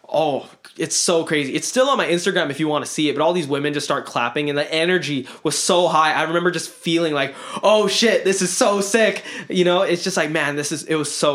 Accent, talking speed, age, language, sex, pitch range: American, 265 wpm, 20-39, English, male, 145-170 Hz